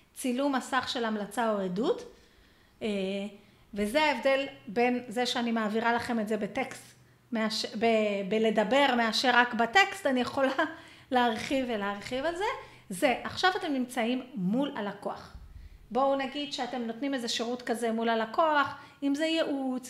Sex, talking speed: female, 135 wpm